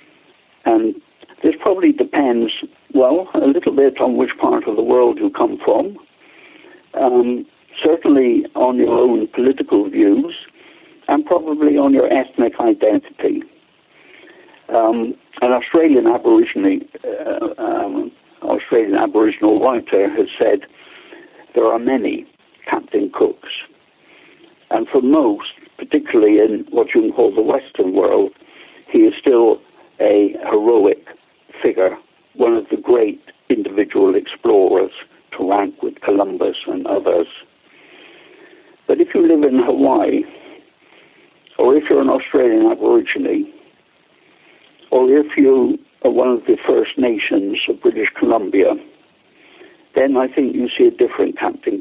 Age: 60-79